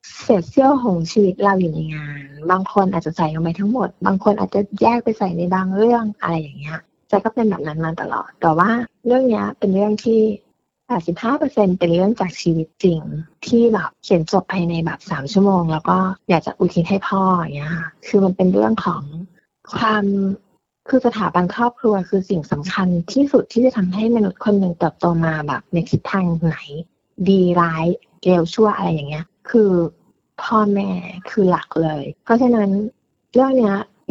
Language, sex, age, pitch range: Thai, female, 20-39, 170-210 Hz